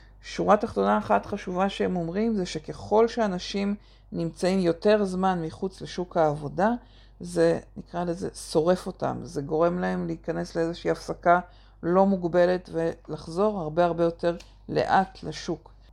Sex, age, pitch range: female, 50-69, 155-185 Hz